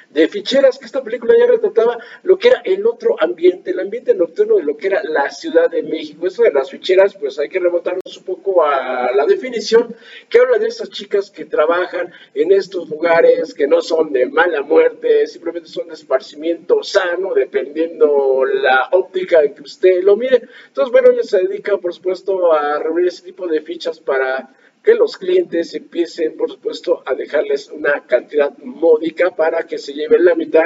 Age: 50-69